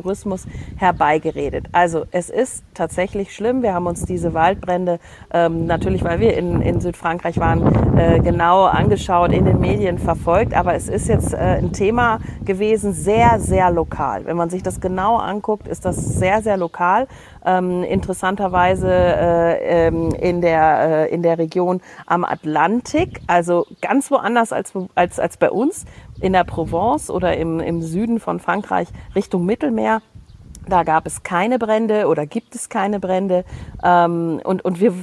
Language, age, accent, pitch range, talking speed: German, 40-59, German, 170-210 Hz, 160 wpm